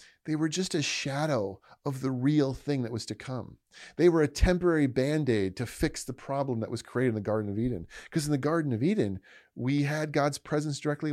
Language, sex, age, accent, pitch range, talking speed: English, male, 30-49, American, 115-155 Hz, 220 wpm